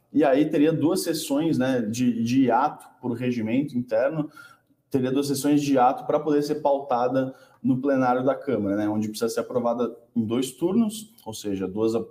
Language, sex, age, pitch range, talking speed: Portuguese, male, 20-39, 115-150 Hz, 180 wpm